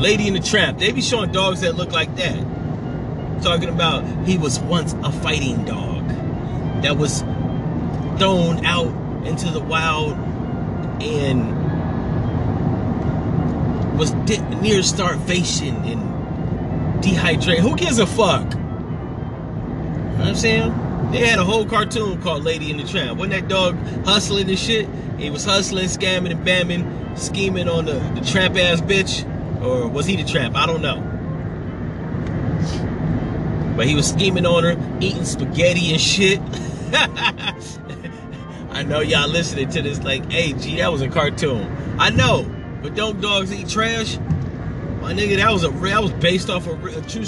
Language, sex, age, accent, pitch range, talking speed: English, male, 30-49, American, 140-185 Hz, 150 wpm